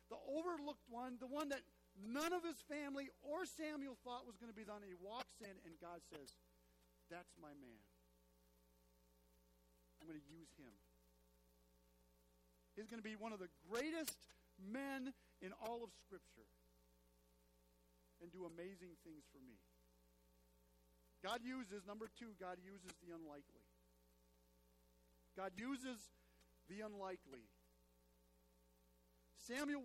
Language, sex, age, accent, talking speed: English, male, 50-69, American, 130 wpm